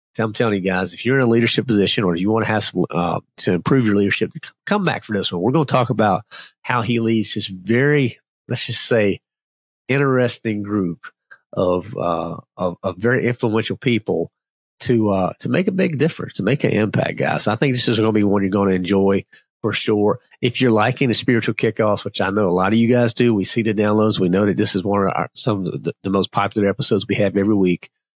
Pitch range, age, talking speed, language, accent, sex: 100-115 Hz, 40-59, 235 wpm, English, American, male